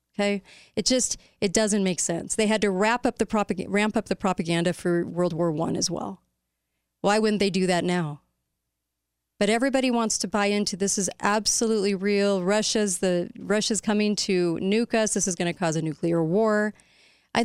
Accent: American